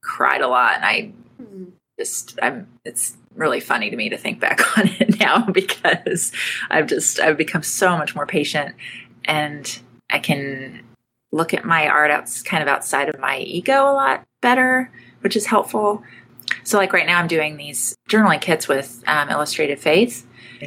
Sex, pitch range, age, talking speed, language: female, 130-190 Hz, 30-49, 175 wpm, English